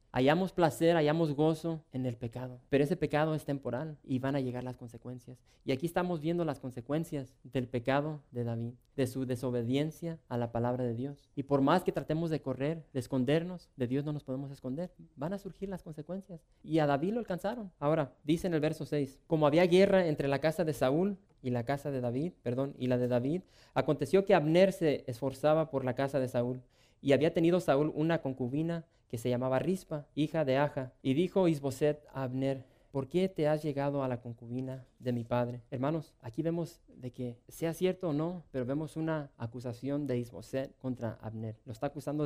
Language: English